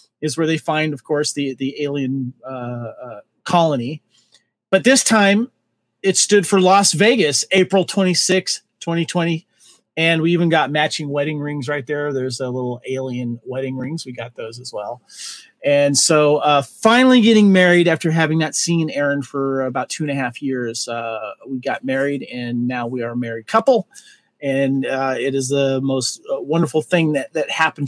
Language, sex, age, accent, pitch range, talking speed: English, male, 40-59, American, 130-165 Hz, 175 wpm